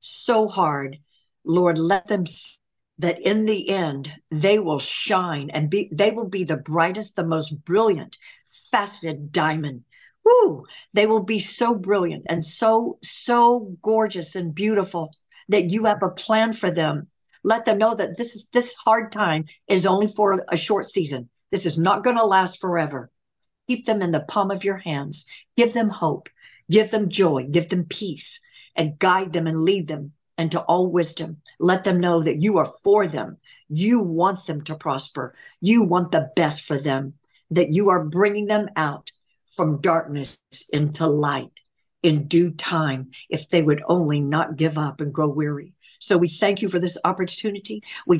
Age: 60-79